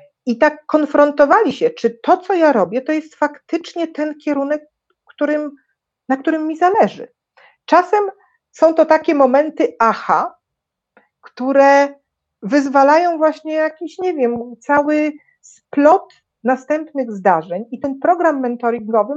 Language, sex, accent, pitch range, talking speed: Polish, female, native, 225-320 Hz, 120 wpm